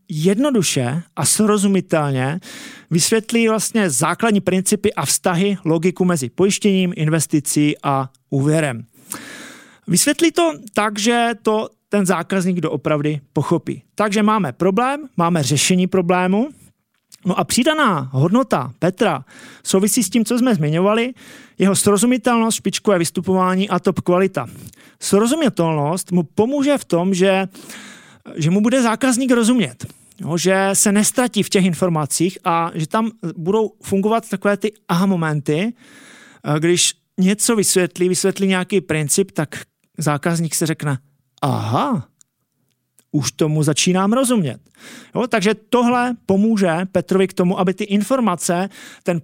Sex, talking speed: male, 120 wpm